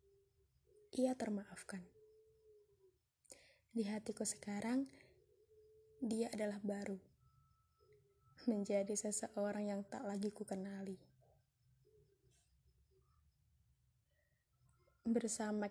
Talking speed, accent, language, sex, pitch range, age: 55 wpm, native, Indonesian, female, 195-230 Hz, 10-29